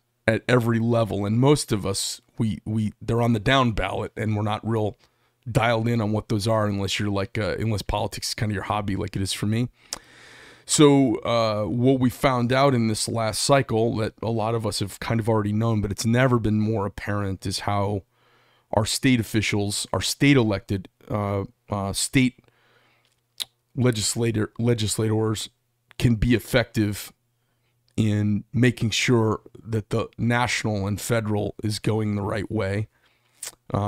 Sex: male